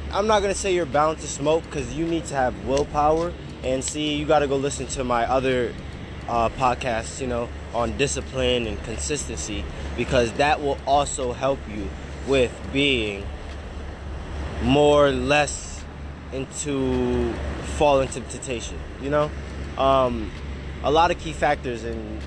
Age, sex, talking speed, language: 20-39, male, 150 wpm, English